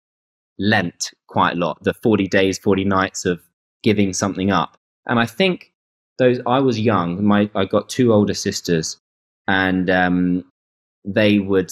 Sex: male